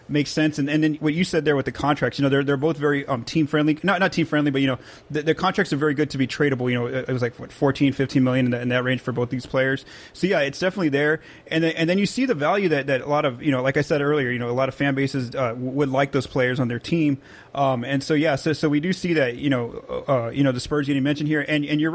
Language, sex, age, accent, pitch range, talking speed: English, male, 30-49, American, 125-145 Hz, 295 wpm